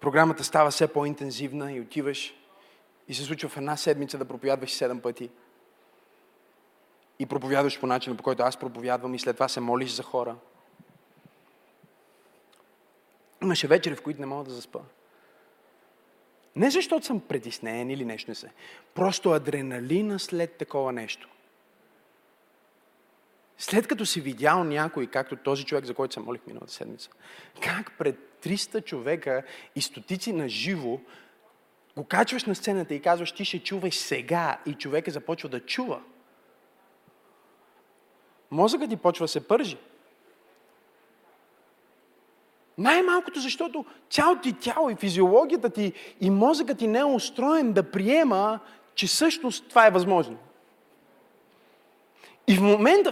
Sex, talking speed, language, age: male, 135 wpm, Bulgarian, 30-49